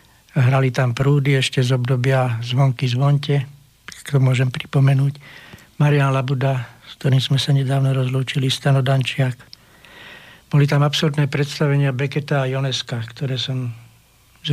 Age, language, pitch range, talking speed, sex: 60-79, Slovak, 130-145 Hz, 125 wpm, male